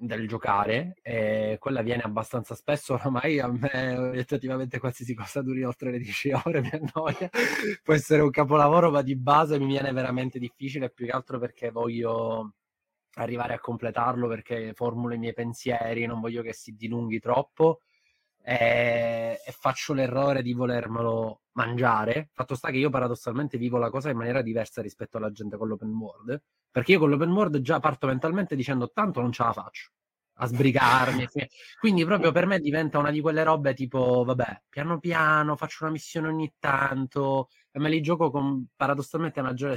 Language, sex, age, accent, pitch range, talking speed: Italian, male, 20-39, native, 115-145 Hz, 170 wpm